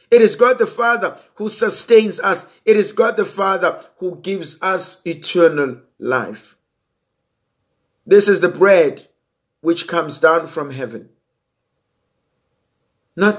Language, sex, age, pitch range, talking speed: English, male, 50-69, 130-180 Hz, 125 wpm